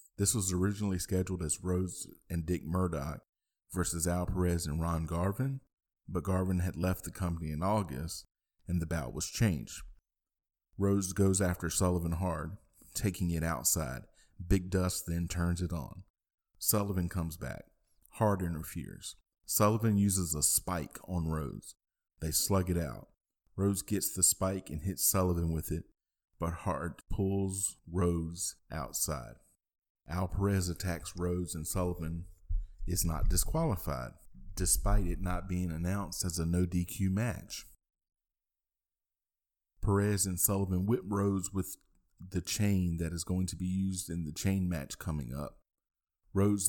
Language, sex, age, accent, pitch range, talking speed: English, male, 40-59, American, 85-95 Hz, 140 wpm